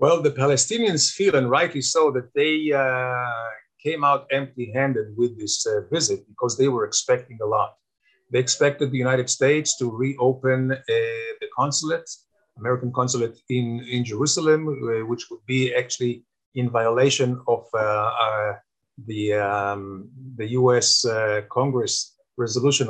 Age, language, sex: 50-69, English, male